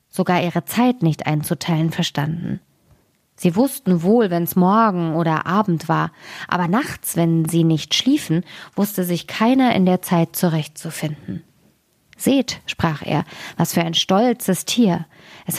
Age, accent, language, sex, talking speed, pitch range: 20-39, German, German, female, 140 wpm, 165-215 Hz